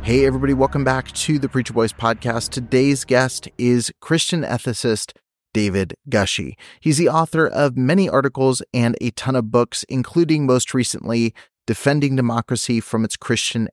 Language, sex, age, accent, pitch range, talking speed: English, male, 30-49, American, 110-130 Hz, 155 wpm